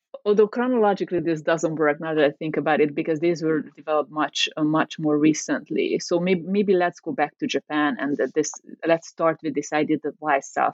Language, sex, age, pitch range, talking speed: English, female, 30-49, 155-200 Hz, 220 wpm